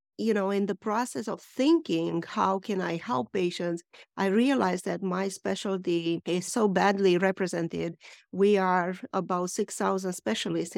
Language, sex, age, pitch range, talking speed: English, female, 50-69, 175-200 Hz, 145 wpm